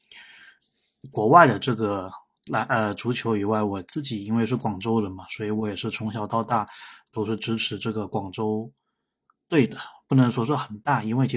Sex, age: male, 20-39